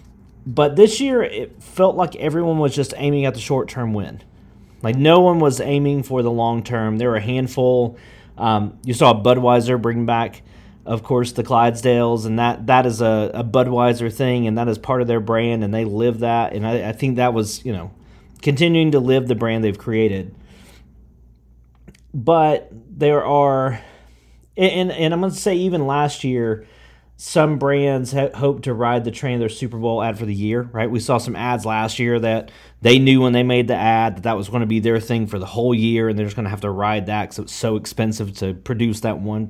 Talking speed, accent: 215 wpm, American